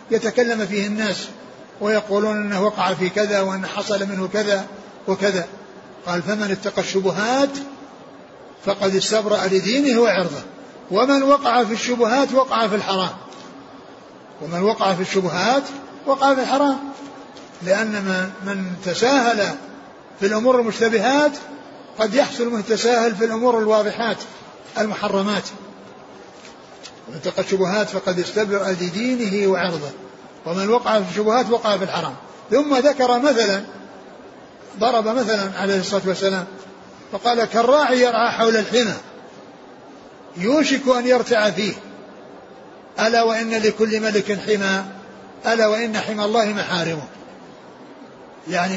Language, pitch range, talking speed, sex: Arabic, 195-240 Hz, 110 wpm, male